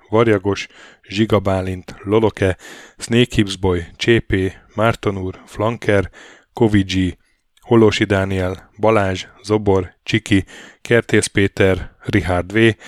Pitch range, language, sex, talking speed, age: 95-115 Hz, Hungarian, male, 80 wpm, 10-29